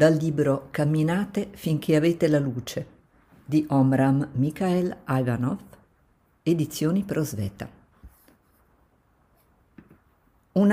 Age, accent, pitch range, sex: 50-69, native, 125-165 Hz, female